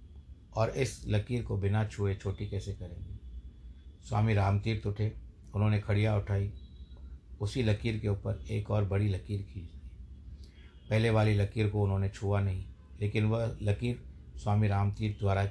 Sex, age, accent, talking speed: male, 50-69, native, 155 wpm